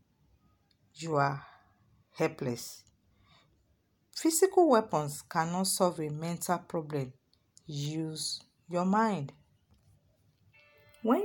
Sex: female